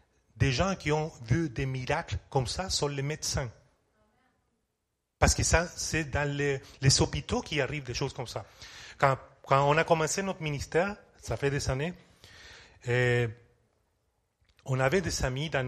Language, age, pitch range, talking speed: French, 30-49, 120-145 Hz, 160 wpm